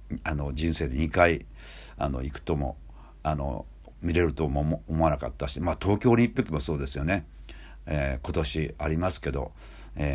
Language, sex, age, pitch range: Japanese, male, 50-69, 70-90 Hz